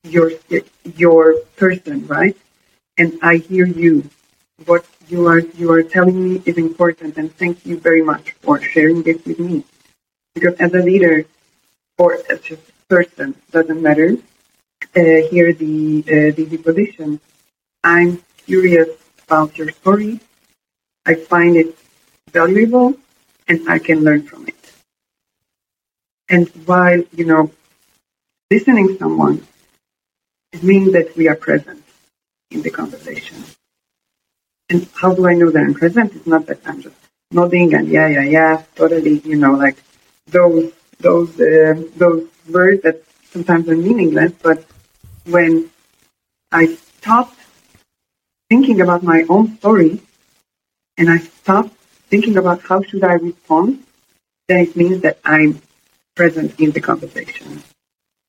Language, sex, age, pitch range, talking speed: English, female, 40-59, 160-185 Hz, 135 wpm